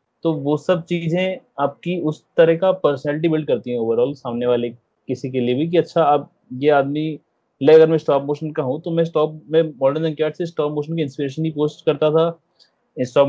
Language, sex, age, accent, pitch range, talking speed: Hindi, male, 20-39, native, 125-150 Hz, 210 wpm